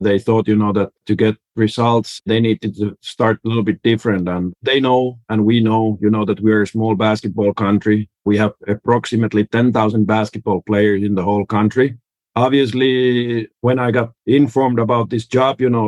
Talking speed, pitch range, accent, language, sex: 195 wpm, 105-120 Hz, Finnish, English, male